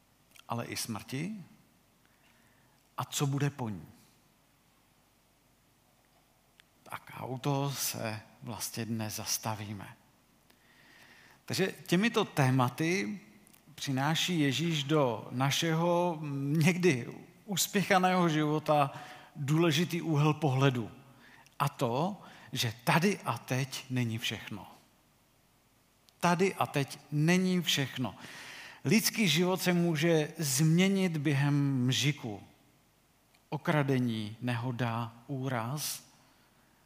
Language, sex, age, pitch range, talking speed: Czech, male, 50-69, 125-170 Hz, 85 wpm